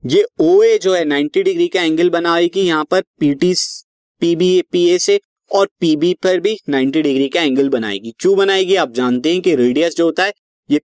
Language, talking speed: Hindi, 195 wpm